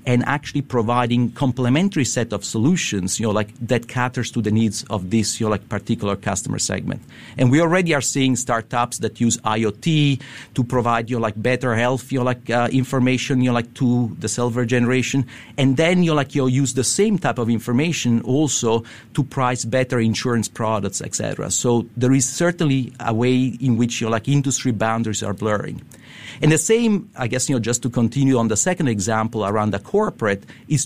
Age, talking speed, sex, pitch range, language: 50-69, 200 wpm, male, 115-140 Hz, English